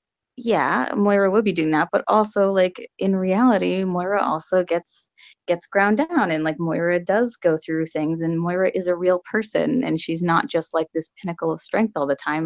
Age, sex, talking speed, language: 20-39, female, 200 wpm, English